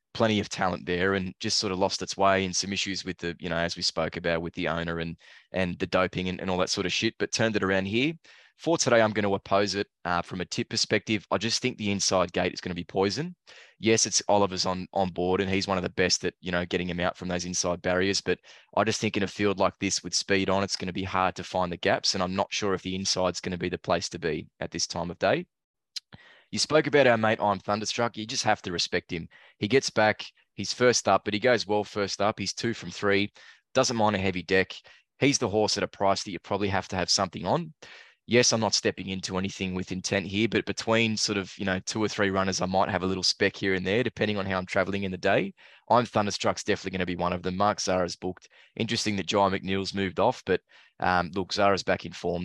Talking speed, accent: 270 wpm, Australian